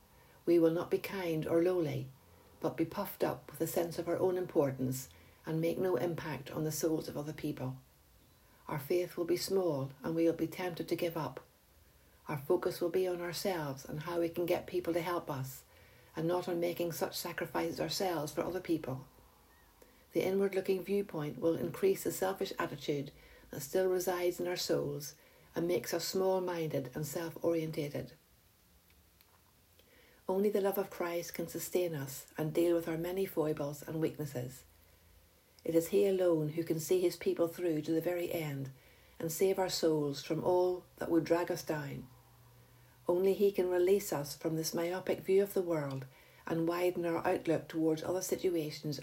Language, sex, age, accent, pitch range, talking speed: English, female, 60-79, Irish, 145-180 Hz, 180 wpm